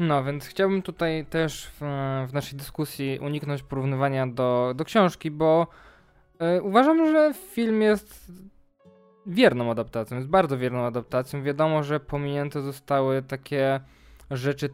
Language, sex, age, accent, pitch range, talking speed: Polish, male, 20-39, native, 140-180 Hz, 125 wpm